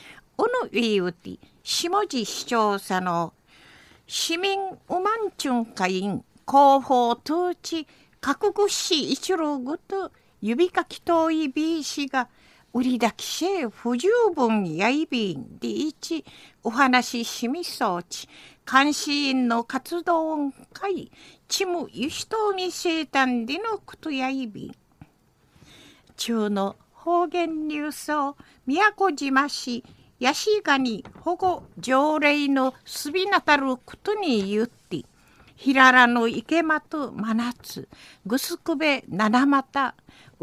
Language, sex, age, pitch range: Japanese, female, 50-69, 235-335 Hz